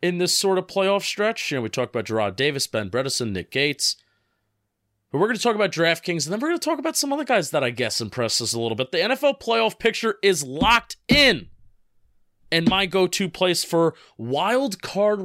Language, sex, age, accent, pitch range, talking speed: English, male, 30-49, American, 150-195 Hz, 225 wpm